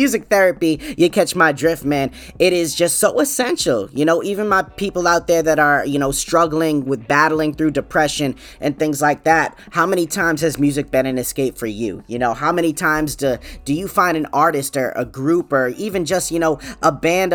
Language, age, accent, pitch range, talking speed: English, 20-39, American, 145-180 Hz, 220 wpm